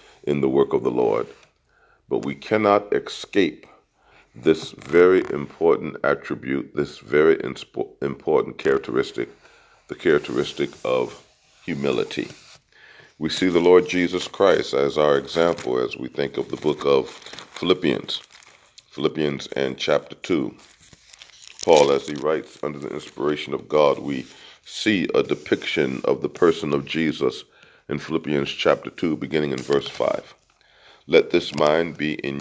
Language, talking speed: English, 140 wpm